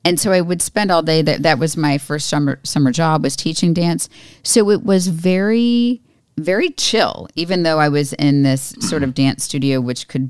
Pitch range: 135-175 Hz